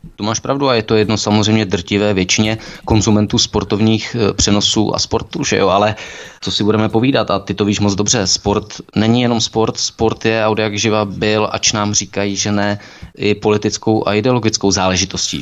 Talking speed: 185 wpm